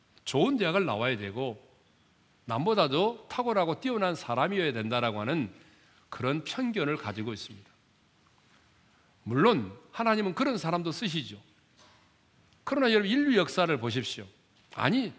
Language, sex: Korean, male